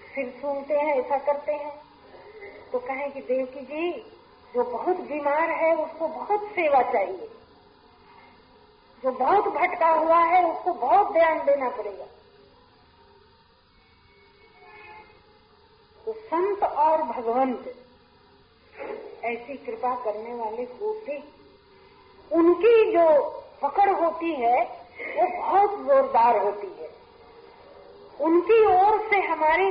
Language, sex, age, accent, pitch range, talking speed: Hindi, female, 50-69, native, 295-425 Hz, 110 wpm